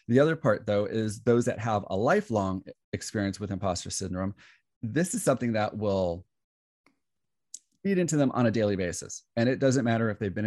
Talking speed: 190 wpm